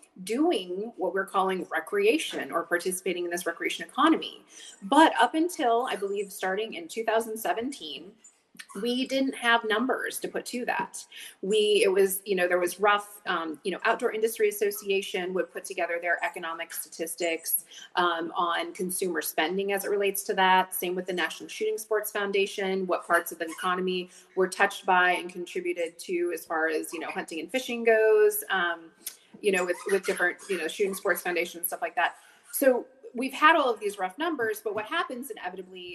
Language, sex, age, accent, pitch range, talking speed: English, female, 30-49, American, 180-255 Hz, 185 wpm